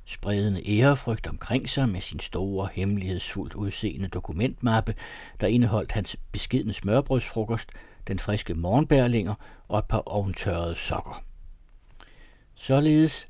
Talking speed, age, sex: 110 wpm, 60-79, male